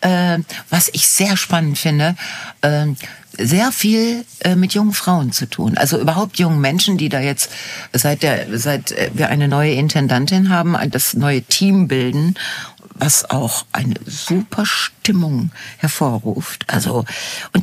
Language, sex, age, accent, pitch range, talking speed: German, female, 60-79, German, 155-195 Hz, 135 wpm